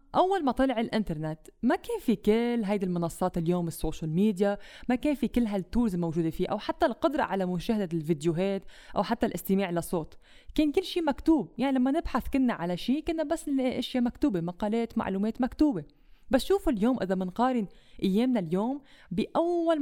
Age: 20-39